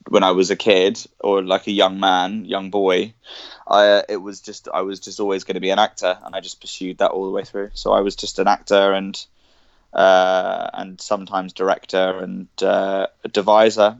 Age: 20-39